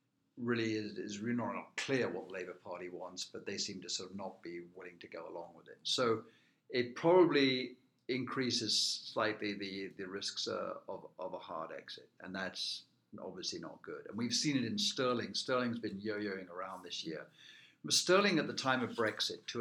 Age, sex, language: 60-79, male, English